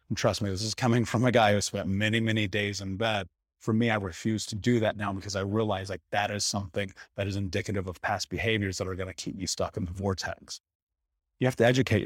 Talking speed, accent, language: 255 wpm, American, English